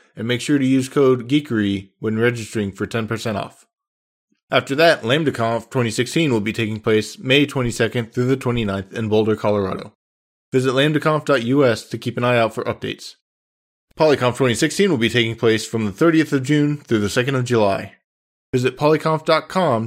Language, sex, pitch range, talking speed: English, male, 110-140 Hz, 165 wpm